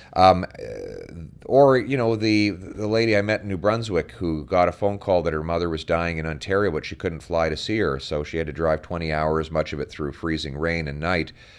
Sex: male